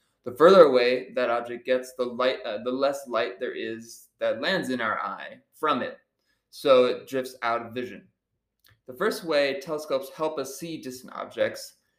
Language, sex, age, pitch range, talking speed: English, male, 20-39, 115-135 Hz, 175 wpm